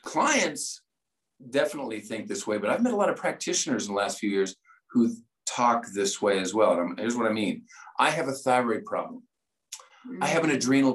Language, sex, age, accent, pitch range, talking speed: English, male, 50-69, American, 115-140 Hz, 205 wpm